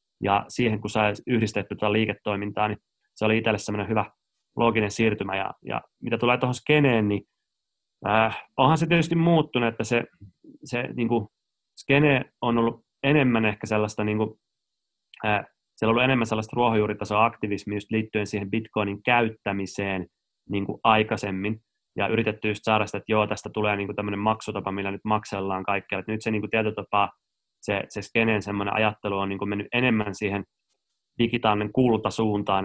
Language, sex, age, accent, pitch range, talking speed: Finnish, male, 20-39, native, 100-115 Hz, 150 wpm